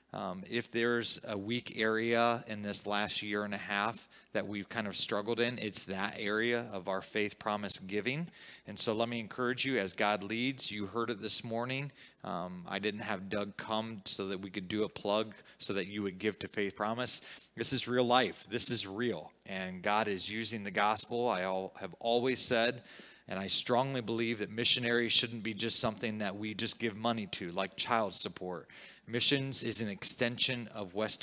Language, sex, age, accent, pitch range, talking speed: English, male, 20-39, American, 100-120 Hz, 200 wpm